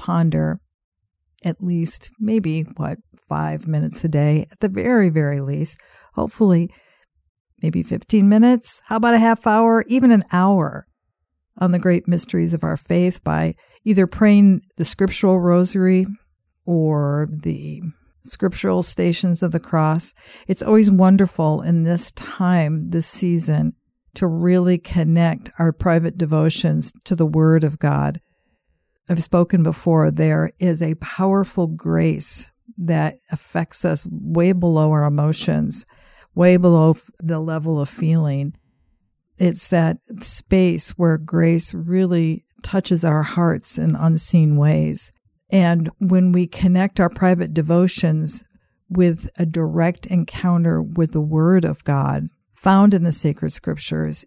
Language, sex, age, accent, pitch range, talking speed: English, female, 50-69, American, 150-185 Hz, 130 wpm